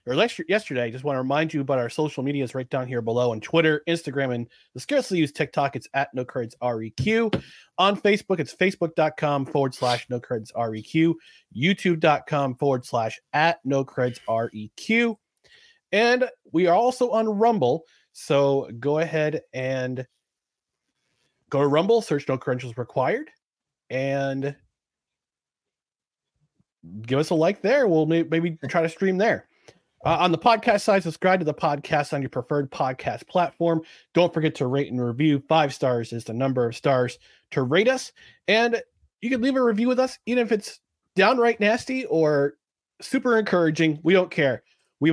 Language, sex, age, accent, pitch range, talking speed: English, male, 30-49, American, 130-190 Hz, 165 wpm